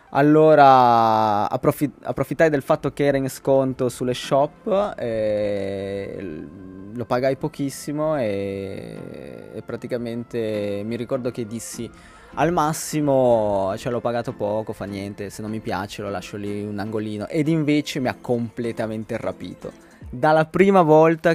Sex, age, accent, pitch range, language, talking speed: male, 20-39, native, 110-135 Hz, Italian, 135 wpm